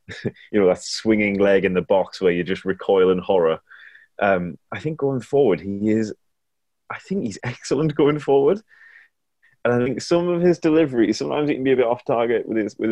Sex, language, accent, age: male, English, British, 20-39